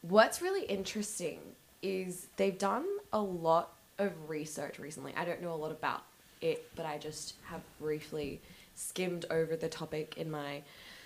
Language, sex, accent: English, female, Australian